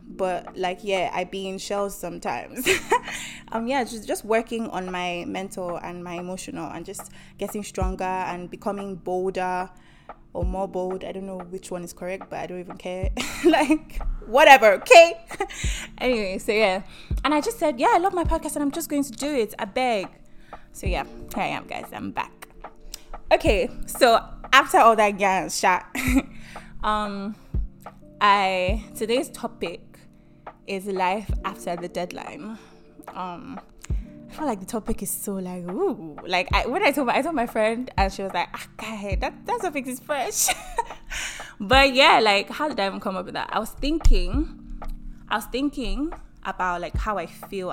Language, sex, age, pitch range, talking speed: English, female, 20-39, 185-255 Hz, 175 wpm